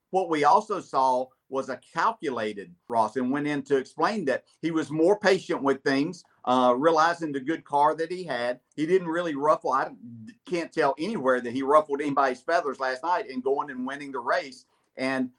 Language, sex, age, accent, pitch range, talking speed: English, male, 50-69, American, 130-185 Hz, 195 wpm